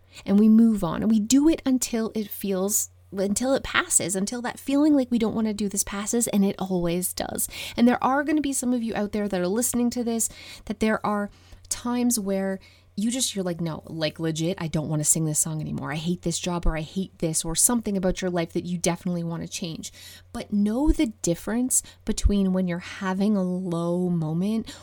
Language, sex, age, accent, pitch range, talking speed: English, female, 20-39, American, 170-220 Hz, 230 wpm